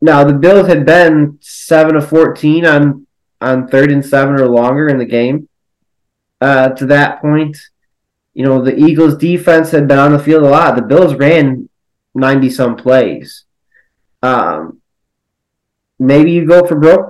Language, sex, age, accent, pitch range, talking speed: English, male, 20-39, American, 130-160 Hz, 160 wpm